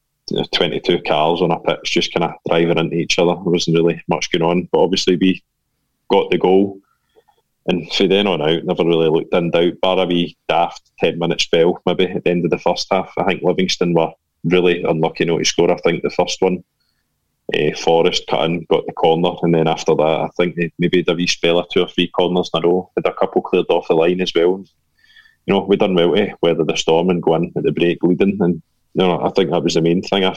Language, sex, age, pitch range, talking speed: English, male, 20-39, 85-90 Hz, 245 wpm